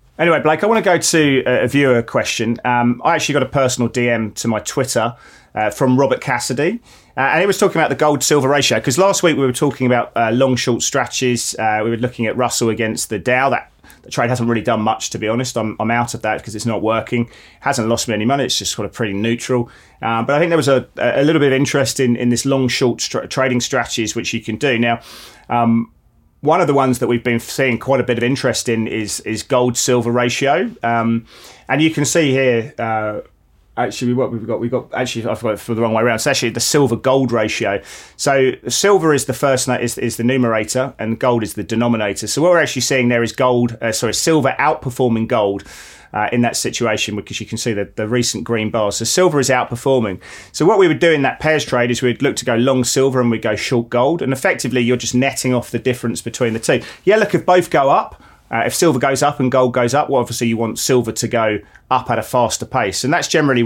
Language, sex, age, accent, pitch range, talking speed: English, male, 30-49, British, 115-135 Hz, 245 wpm